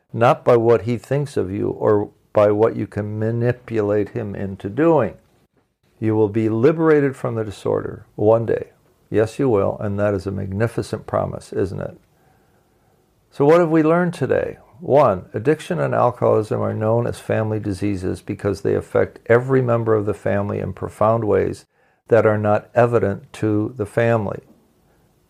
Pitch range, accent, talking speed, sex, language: 105-120 Hz, American, 165 wpm, male, English